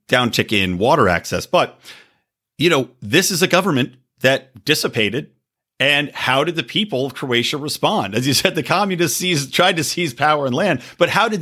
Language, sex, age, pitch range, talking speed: English, male, 40-59, 125-175 Hz, 185 wpm